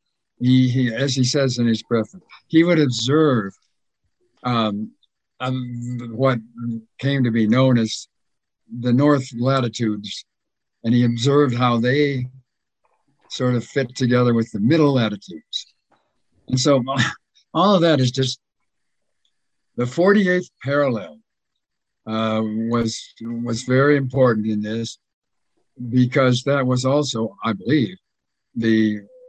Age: 60-79